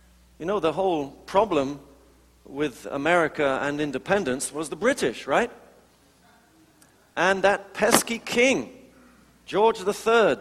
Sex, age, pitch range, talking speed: male, 40-59, 145-205 Hz, 110 wpm